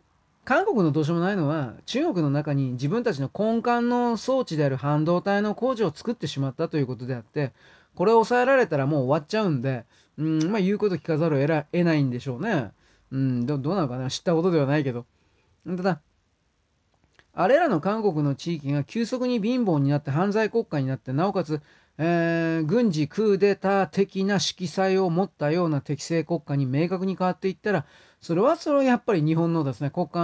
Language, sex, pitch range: Japanese, male, 145-195 Hz